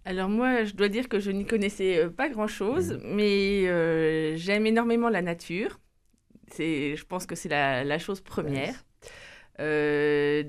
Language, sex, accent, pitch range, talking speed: French, female, French, 165-215 Hz, 155 wpm